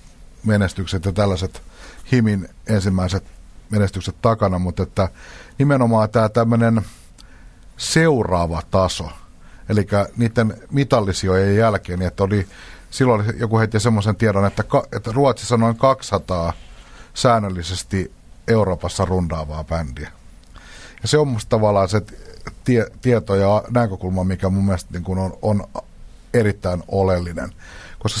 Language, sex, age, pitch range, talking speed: Finnish, male, 60-79, 90-115 Hz, 110 wpm